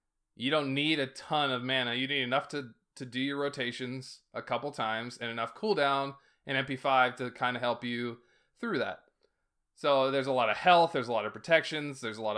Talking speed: 215 wpm